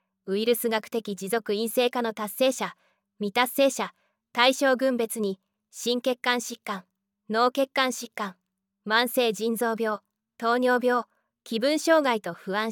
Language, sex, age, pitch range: Japanese, female, 20-39, 205-250 Hz